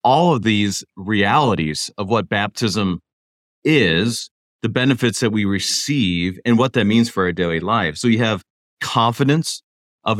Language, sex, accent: English, male, American